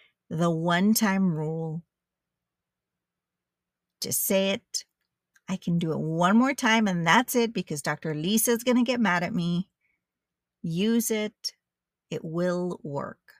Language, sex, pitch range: English, female, 165-215 Hz